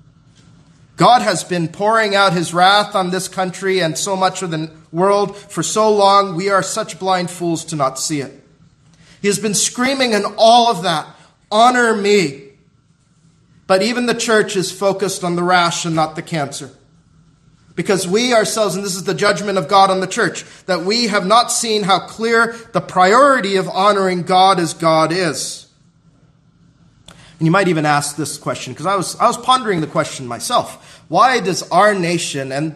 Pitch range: 160-205 Hz